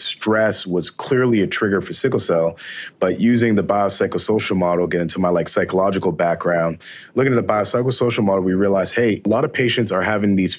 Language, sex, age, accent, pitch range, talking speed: English, male, 30-49, American, 95-115 Hz, 195 wpm